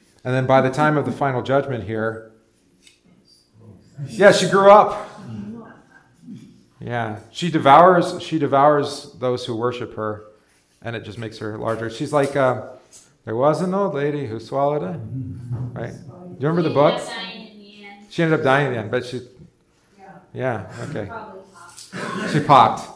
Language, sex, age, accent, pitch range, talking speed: English, male, 40-59, American, 110-145 Hz, 155 wpm